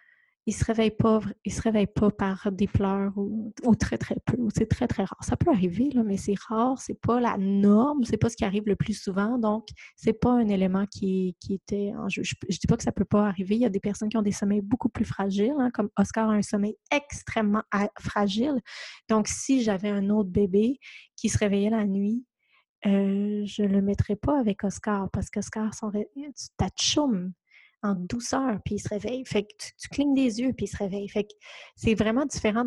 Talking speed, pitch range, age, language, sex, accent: 235 wpm, 205-235 Hz, 20-39, French, female, Canadian